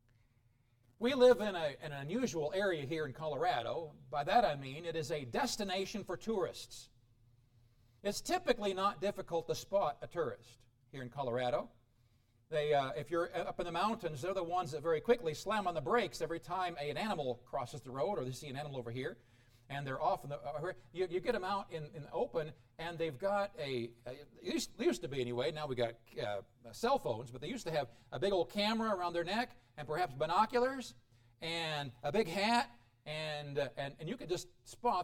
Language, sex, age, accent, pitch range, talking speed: English, male, 50-69, American, 120-180 Hz, 200 wpm